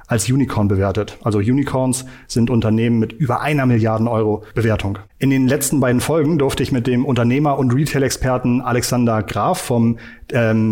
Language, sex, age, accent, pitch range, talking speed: German, male, 40-59, German, 115-135 Hz, 160 wpm